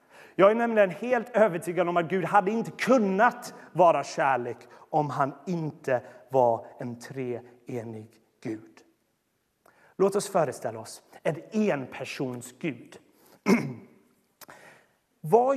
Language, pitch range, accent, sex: Swedish, 150-220 Hz, native, male